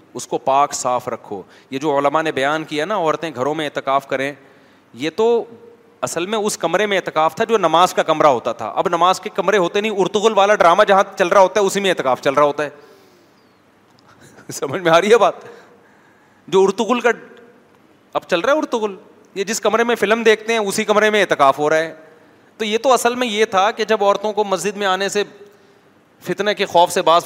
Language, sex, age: Urdu, male, 30-49